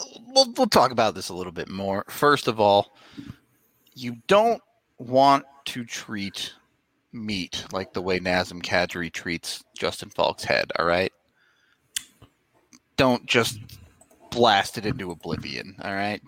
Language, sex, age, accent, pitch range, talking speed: English, male, 30-49, American, 95-125 Hz, 135 wpm